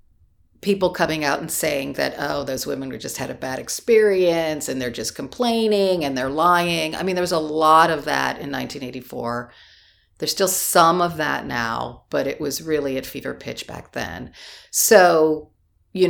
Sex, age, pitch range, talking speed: female, 50-69, 135-175 Hz, 185 wpm